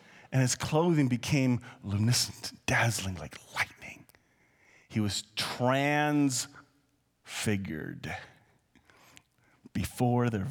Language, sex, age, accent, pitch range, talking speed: English, male, 40-59, American, 125-185 Hz, 75 wpm